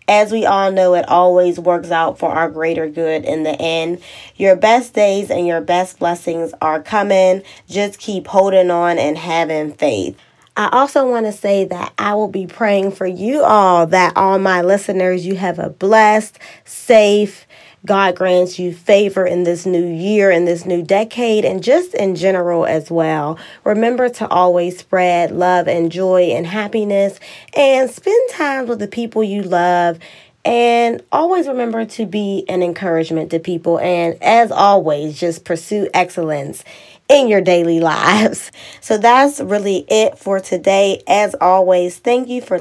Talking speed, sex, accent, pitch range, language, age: 165 wpm, female, American, 175-215 Hz, English, 20-39